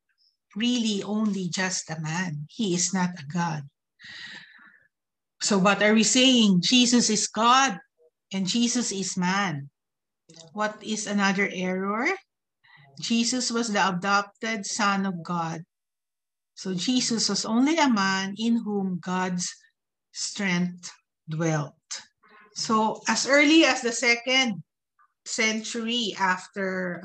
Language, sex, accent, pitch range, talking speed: English, female, Filipino, 185-230 Hz, 115 wpm